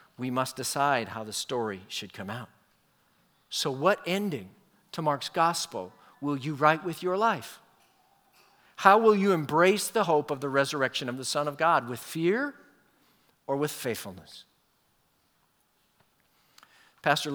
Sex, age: male, 50-69